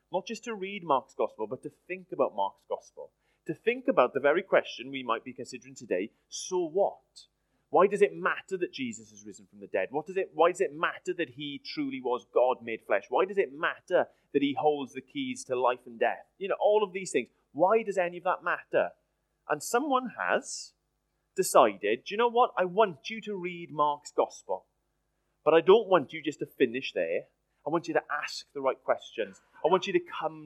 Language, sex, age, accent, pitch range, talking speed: English, male, 30-49, British, 135-225 Hz, 220 wpm